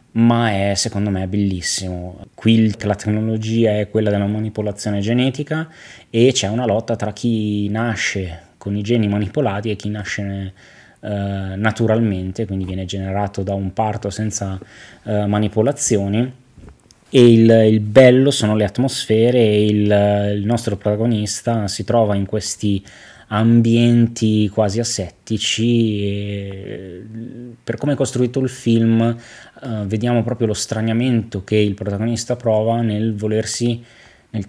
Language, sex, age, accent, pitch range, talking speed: Italian, male, 20-39, native, 100-115 Hz, 125 wpm